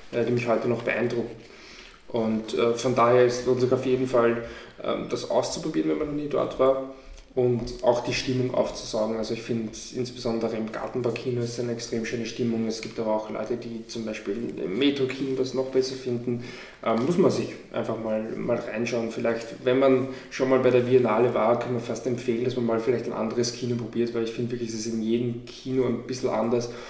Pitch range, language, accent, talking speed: 110-125 Hz, German, German, 215 wpm